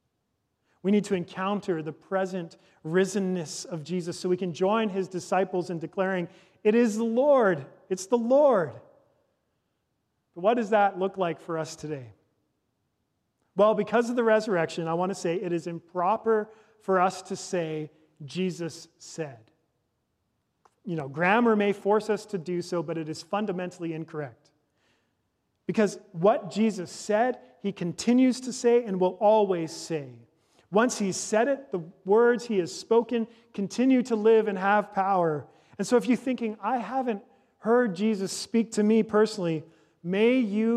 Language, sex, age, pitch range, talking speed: English, male, 40-59, 170-215 Hz, 155 wpm